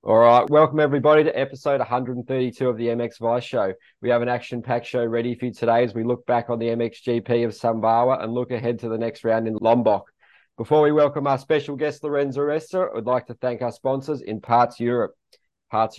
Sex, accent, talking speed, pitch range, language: male, Australian, 220 wpm, 95-120 Hz, English